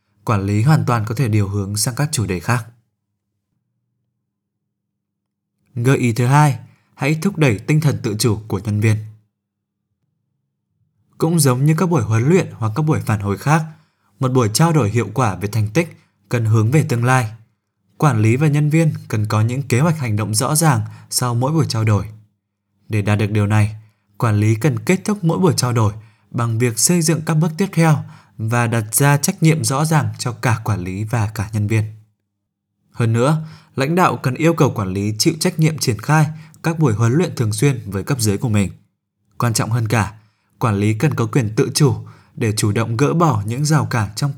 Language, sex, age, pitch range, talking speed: Vietnamese, male, 20-39, 105-150 Hz, 210 wpm